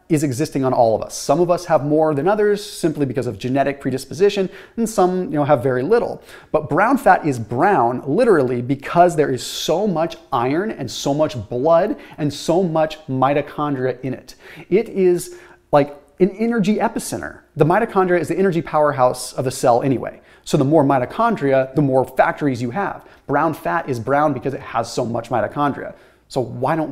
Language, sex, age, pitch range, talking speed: English, male, 30-49, 135-175 Hz, 190 wpm